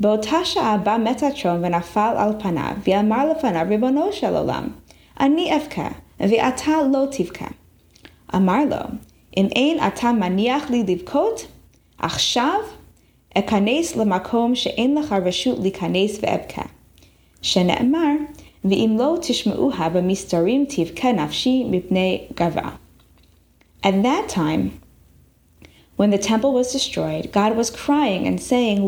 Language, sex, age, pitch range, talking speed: English, female, 20-39, 195-285 Hz, 125 wpm